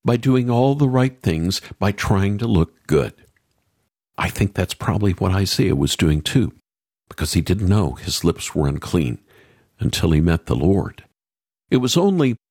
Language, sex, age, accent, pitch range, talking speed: English, male, 60-79, American, 95-140 Hz, 175 wpm